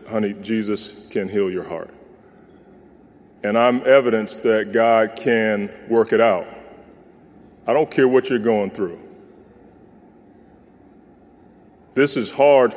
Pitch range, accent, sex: 115-130 Hz, American, male